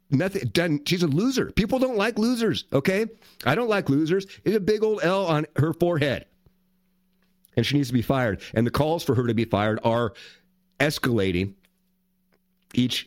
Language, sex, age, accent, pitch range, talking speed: English, male, 50-69, American, 110-180 Hz, 180 wpm